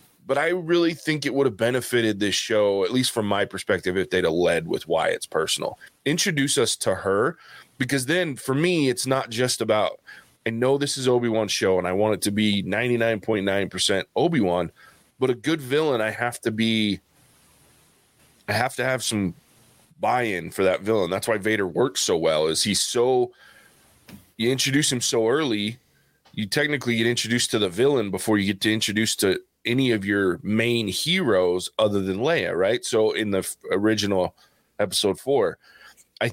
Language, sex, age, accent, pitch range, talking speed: English, male, 20-39, American, 100-125 Hz, 180 wpm